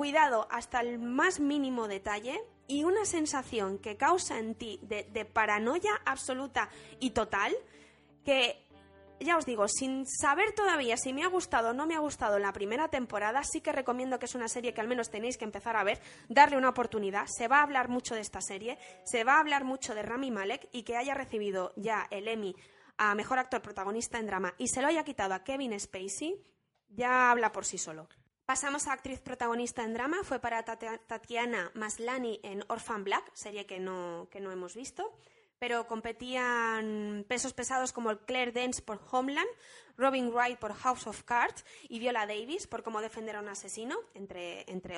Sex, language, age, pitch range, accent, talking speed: female, Spanish, 20-39, 215-275 Hz, Spanish, 190 wpm